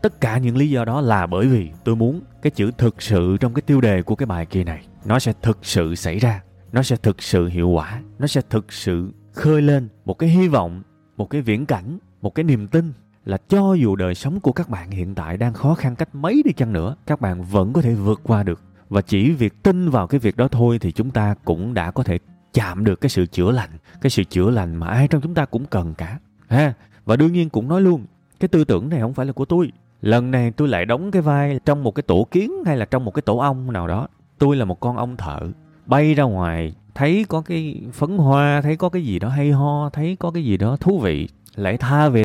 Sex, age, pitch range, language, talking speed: male, 20-39, 95-145 Hz, Vietnamese, 260 wpm